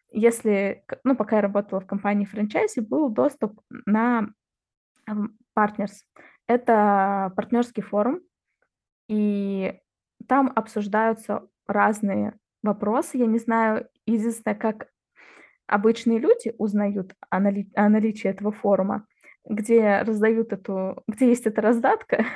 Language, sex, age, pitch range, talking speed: Russian, female, 20-39, 205-240 Hz, 110 wpm